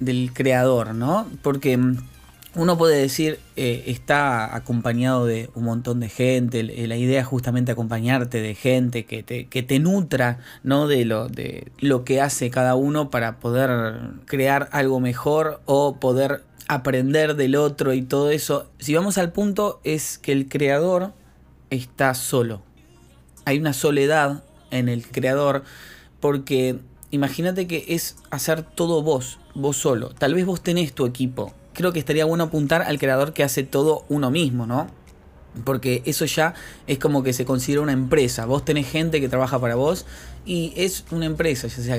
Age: 20-39